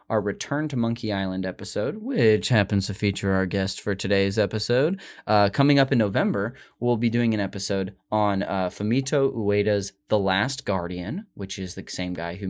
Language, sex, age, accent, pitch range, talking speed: English, male, 20-39, American, 100-135 Hz, 180 wpm